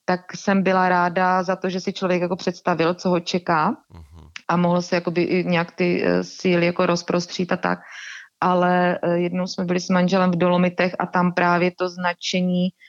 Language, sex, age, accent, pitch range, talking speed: Czech, female, 30-49, native, 175-190 Hz, 170 wpm